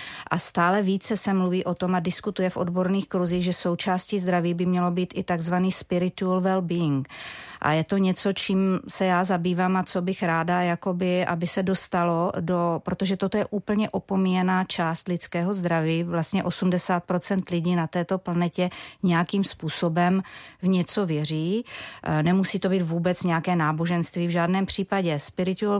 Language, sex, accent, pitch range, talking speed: Czech, female, native, 175-190 Hz, 155 wpm